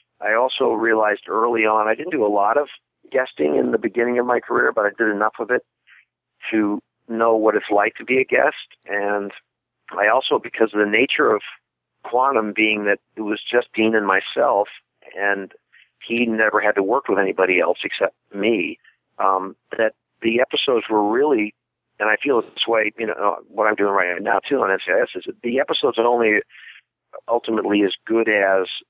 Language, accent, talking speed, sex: English, American, 190 wpm, male